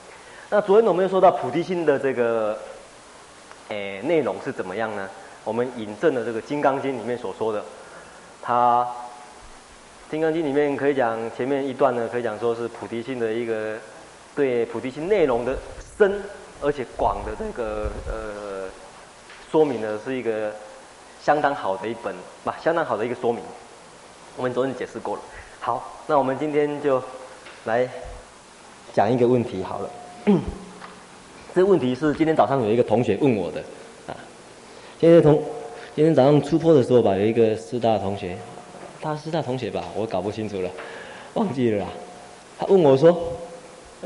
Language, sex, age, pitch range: Chinese, male, 20-39, 110-170 Hz